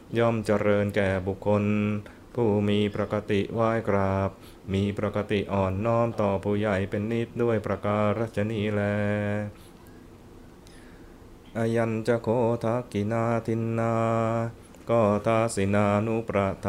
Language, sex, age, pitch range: Thai, male, 20-39, 100-115 Hz